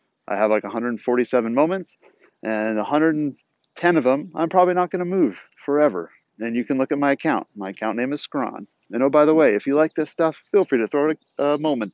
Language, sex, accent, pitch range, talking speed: English, male, American, 110-160 Hz, 215 wpm